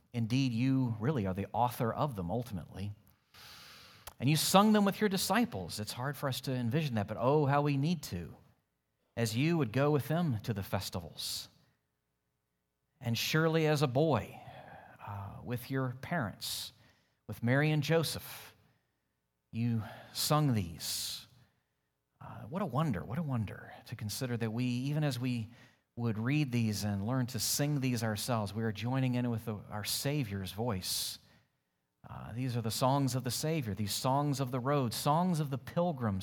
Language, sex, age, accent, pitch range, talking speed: English, male, 40-59, American, 100-135 Hz, 170 wpm